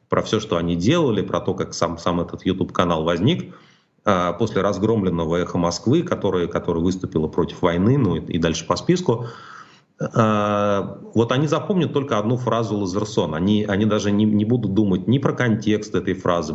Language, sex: Russian, male